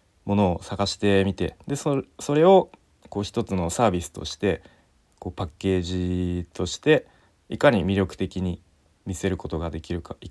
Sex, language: male, Japanese